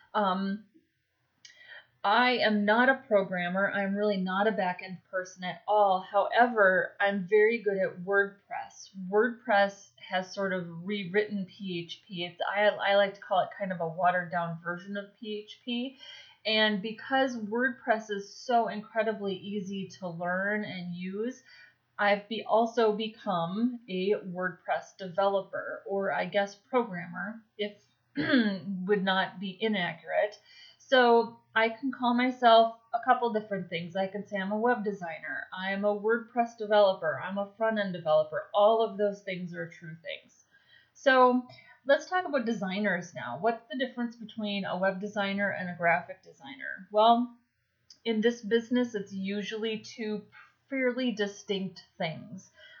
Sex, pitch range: female, 190-230 Hz